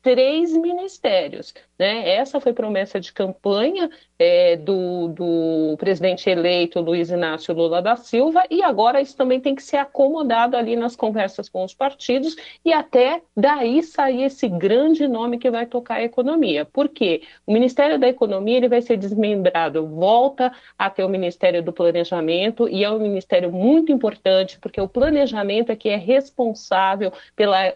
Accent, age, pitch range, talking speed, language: Brazilian, 50-69, 180-250 Hz, 160 wpm, Portuguese